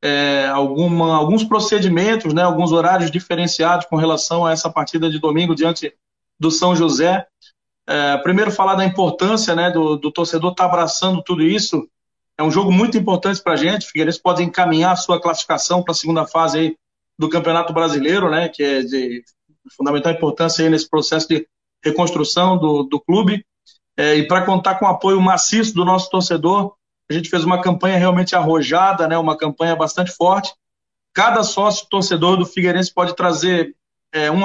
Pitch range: 160-185 Hz